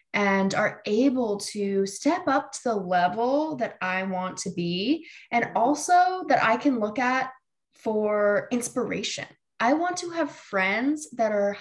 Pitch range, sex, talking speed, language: 195-255 Hz, female, 155 wpm, English